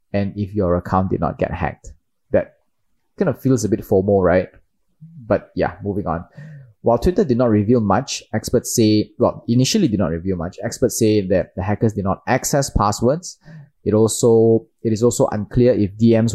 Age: 20-39